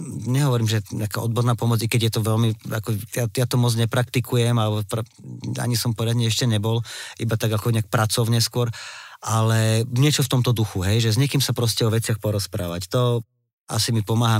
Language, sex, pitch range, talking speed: Slovak, male, 105-120 Hz, 190 wpm